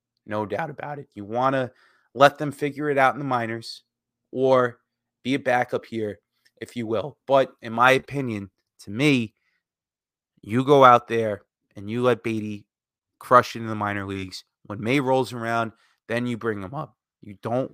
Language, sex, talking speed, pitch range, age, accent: English, male, 185 wpm, 110-145 Hz, 20-39, American